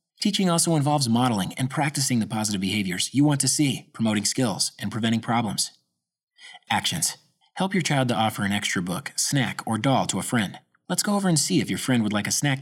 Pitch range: 110-155 Hz